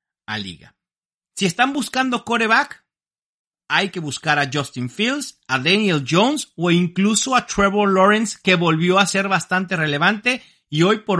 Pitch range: 150-200 Hz